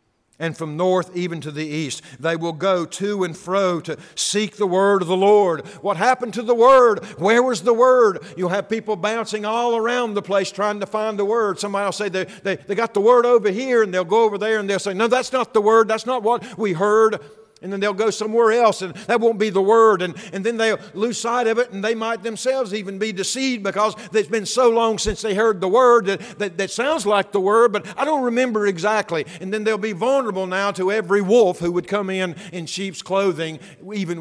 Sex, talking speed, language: male, 240 wpm, English